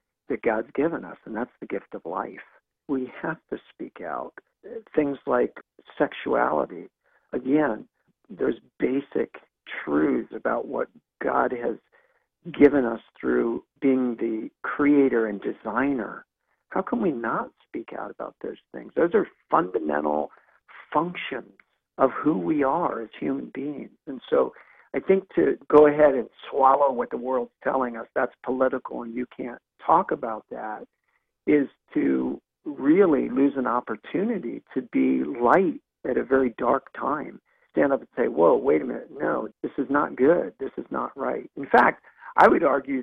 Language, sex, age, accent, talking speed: English, male, 50-69, American, 155 wpm